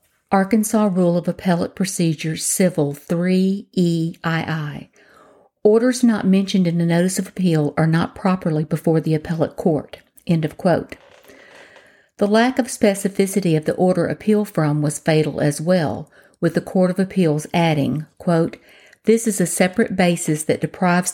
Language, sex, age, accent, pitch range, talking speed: English, female, 50-69, American, 165-195 Hz, 150 wpm